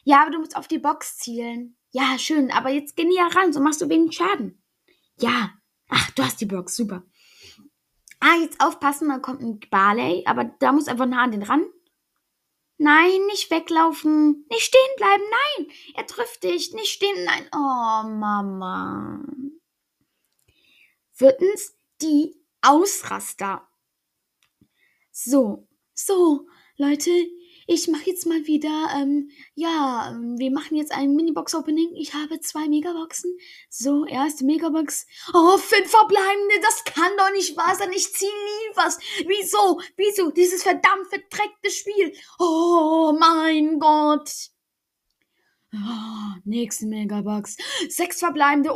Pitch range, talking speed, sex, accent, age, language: 280-360 Hz, 135 wpm, female, German, 10-29, German